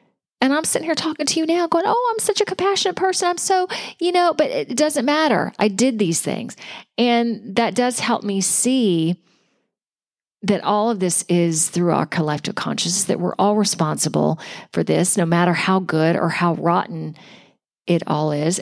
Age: 40-59